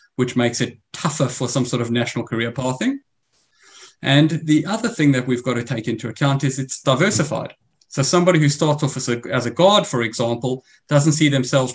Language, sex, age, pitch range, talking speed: English, male, 30-49, 120-145 Hz, 200 wpm